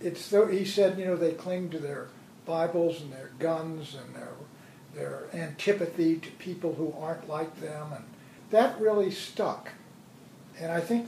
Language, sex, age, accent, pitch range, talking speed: English, male, 60-79, American, 170-210 Hz, 170 wpm